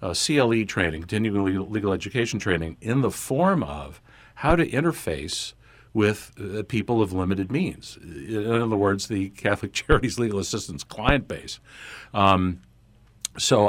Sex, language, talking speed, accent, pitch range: male, English, 150 wpm, American, 90-115 Hz